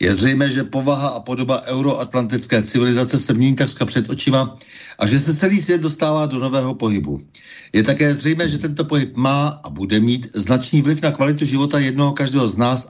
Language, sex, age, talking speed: Czech, male, 60-79, 190 wpm